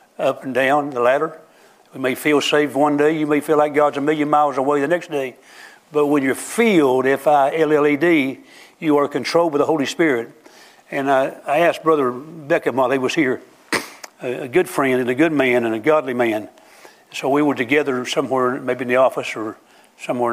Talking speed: 205 wpm